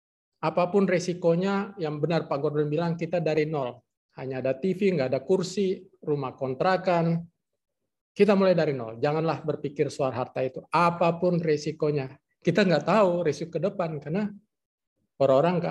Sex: male